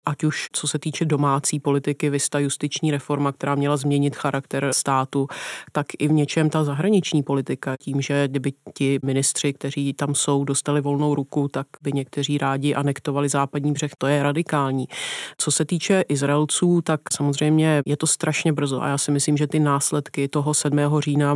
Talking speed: 175 wpm